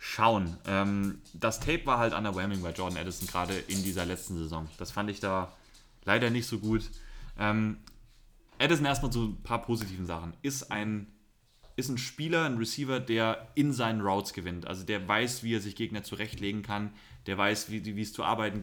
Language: German